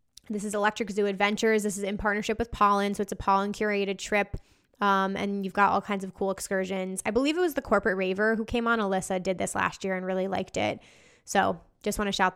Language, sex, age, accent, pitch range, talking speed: English, female, 20-39, American, 195-225 Hz, 245 wpm